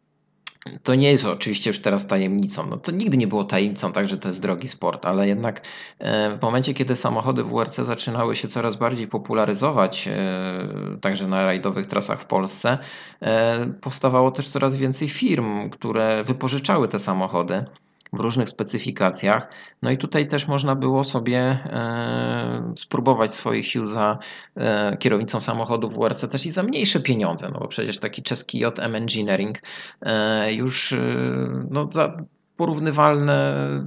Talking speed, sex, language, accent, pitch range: 145 wpm, male, Polish, native, 100-130 Hz